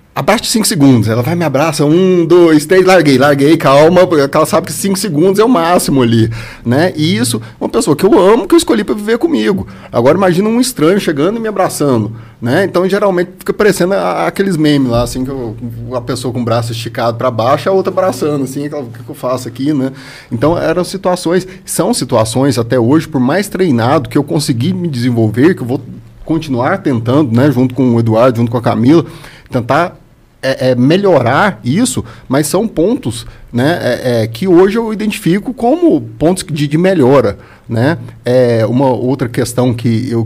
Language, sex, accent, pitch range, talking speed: Portuguese, male, Brazilian, 120-165 Hz, 195 wpm